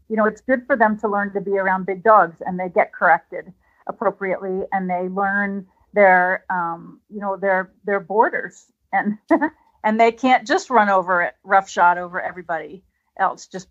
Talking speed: 180 wpm